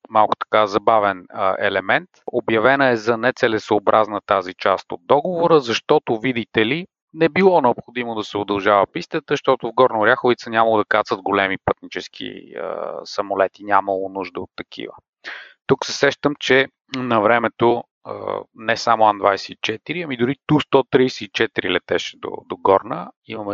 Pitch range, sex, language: 100-135 Hz, male, Bulgarian